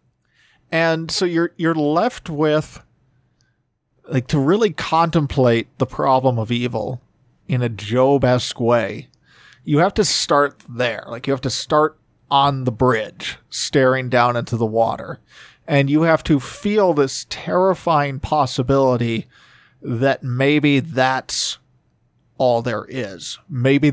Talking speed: 130 wpm